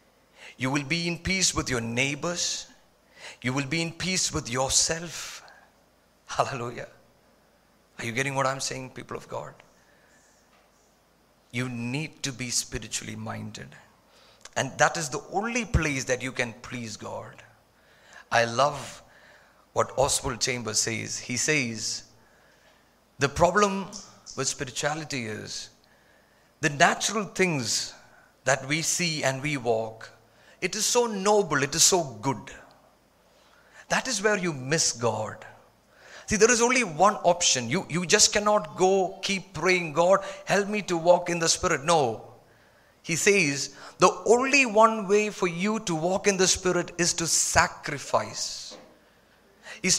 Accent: native